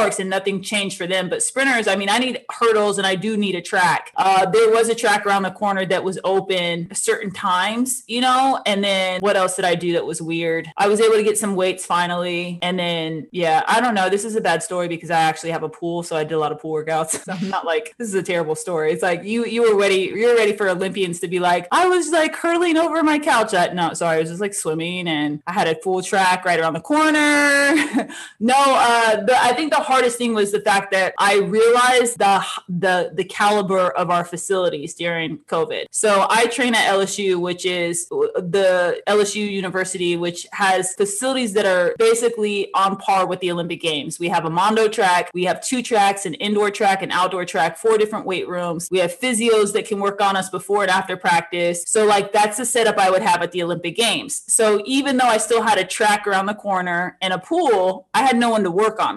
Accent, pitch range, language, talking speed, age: American, 175-225 Hz, English, 235 wpm, 20-39